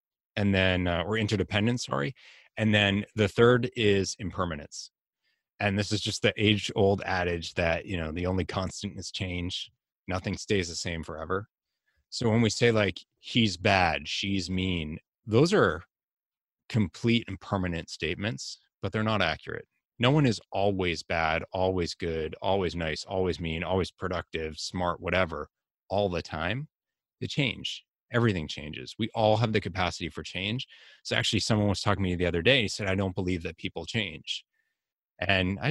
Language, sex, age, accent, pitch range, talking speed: English, male, 30-49, American, 90-110 Hz, 170 wpm